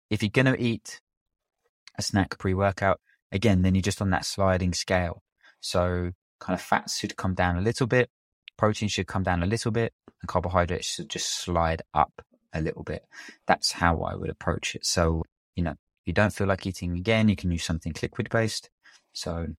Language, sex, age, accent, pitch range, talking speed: English, male, 20-39, British, 90-110 Hz, 195 wpm